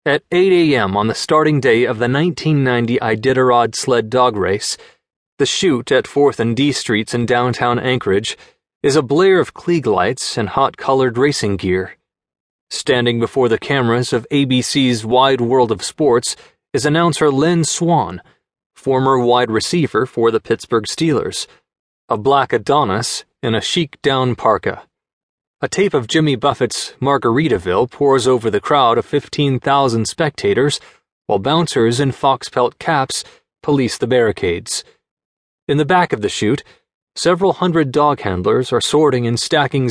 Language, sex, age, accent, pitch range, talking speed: English, male, 30-49, American, 120-150 Hz, 145 wpm